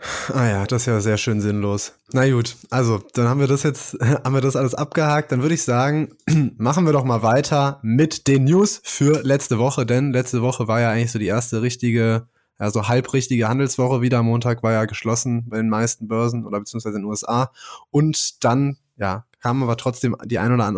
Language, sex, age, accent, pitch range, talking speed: German, male, 20-39, German, 115-135 Hz, 215 wpm